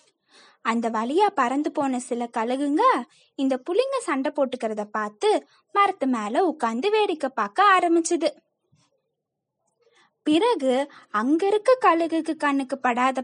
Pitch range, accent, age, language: 245-355 Hz, native, 20-39, Tamil